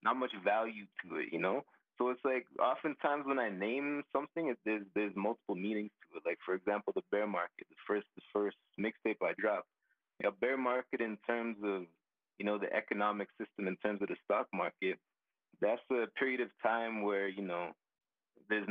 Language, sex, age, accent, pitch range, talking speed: English, male, 30-49, American, 100-120 Hz, 190 wpm